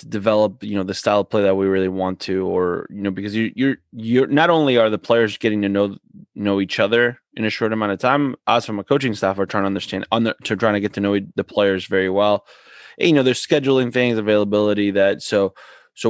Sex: male